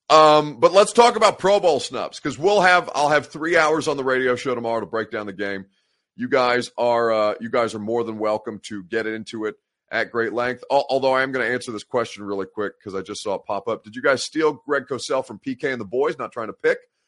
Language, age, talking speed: English, 30-49, 260 wpm